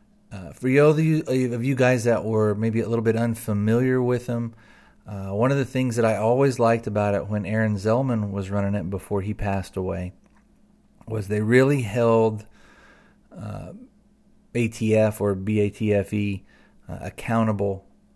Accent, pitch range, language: American, 100-125 Hz, English